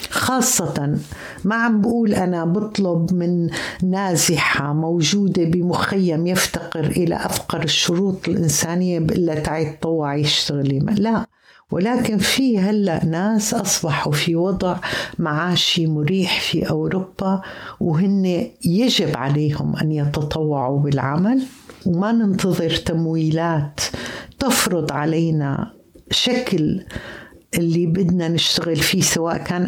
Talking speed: 100 wpm